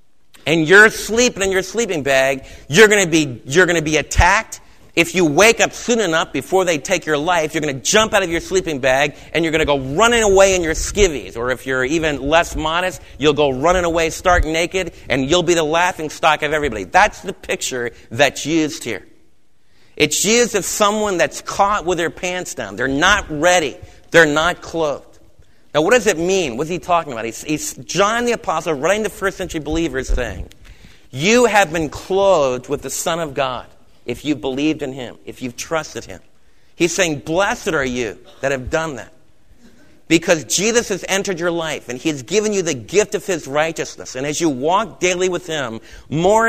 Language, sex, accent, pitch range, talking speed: English, male, American, 145-190 Hz, 205 wpm